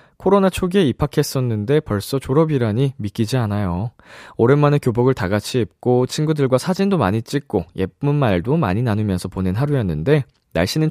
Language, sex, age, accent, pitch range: Korean, male, 20-39, native, 105-155 Hz